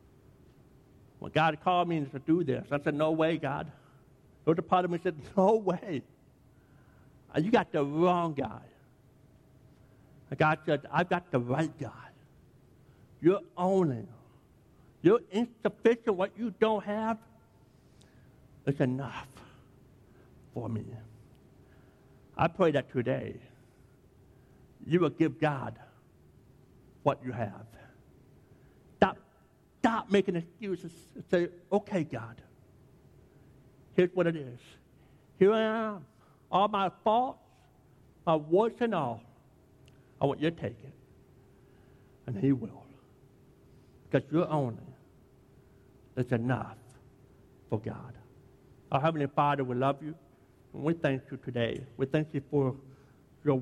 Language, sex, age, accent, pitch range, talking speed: English, male, 60-79, American, 130-160 Hz, 125 wpm